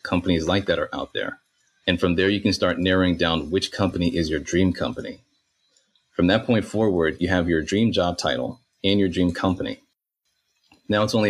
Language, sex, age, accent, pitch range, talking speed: English, male, 30-49, American, 85-100 Hz, 195 wpm